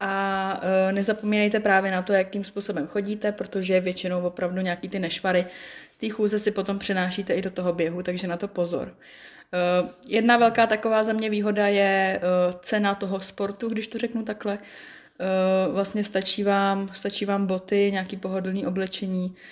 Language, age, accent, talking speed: Czech, 20-39, native, 155 wpm